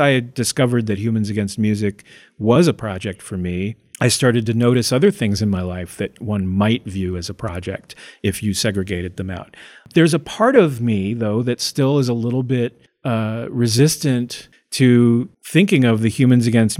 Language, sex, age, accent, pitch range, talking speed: English, male, 40-59, American, 105-125 Hz, 185 wpm